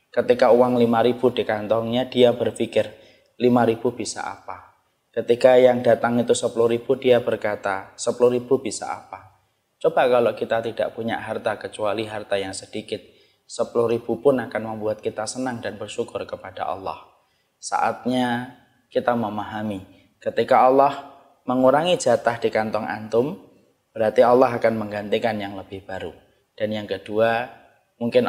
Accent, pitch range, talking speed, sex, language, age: native, 105-125 Hz, 140 wpm, male, Indonesian, 20-39